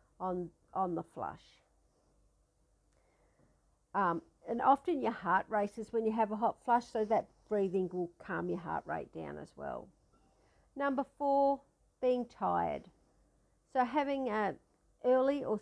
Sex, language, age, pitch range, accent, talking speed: female, English, 50-69, 195-240 Hz, Australian, 140 wpm